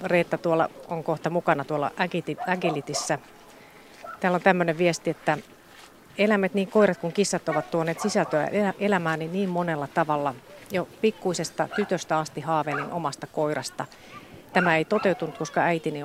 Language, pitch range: Finnish, 150-180 Hz